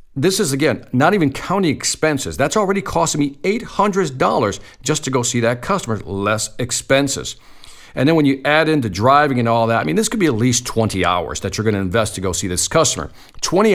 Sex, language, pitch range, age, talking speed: male, English, 110-160 Hz, 50-69, 215 wpm